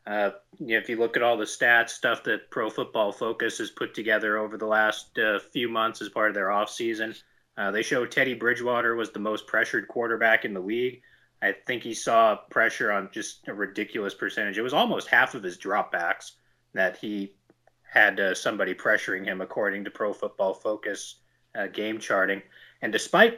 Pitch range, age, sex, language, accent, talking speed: 105-130 Hz, 30-49, male, English, American, 185 wpm